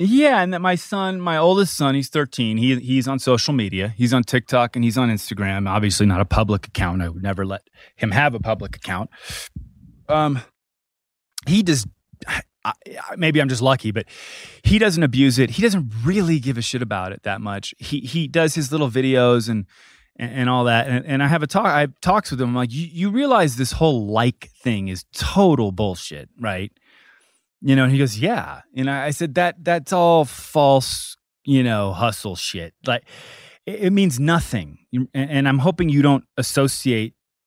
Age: 20-39